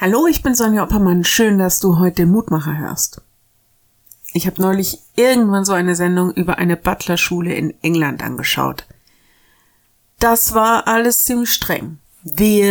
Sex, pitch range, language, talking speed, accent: female, 170-215 Hz, German, 145 wpm, German